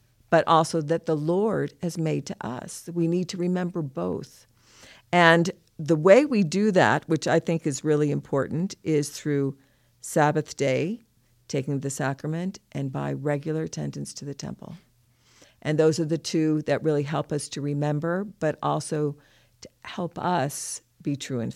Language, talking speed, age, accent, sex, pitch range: English, 165 wpm, 50-69, American, female, 145-175 Hz